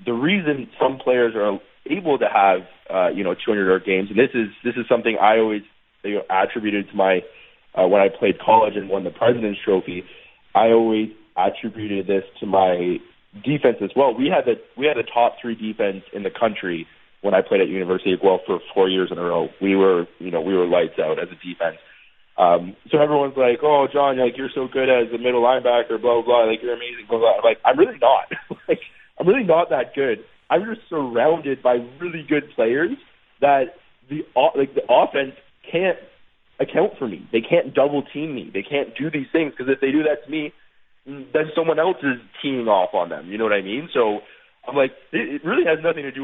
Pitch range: 110-145 Hz